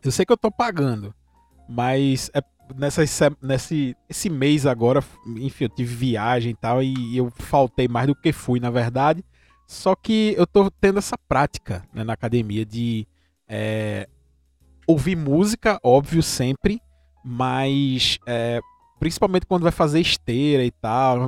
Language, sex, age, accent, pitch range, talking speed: Portuguese, male, 20-39, Brazilian, 120-165 Hz, 140 wpm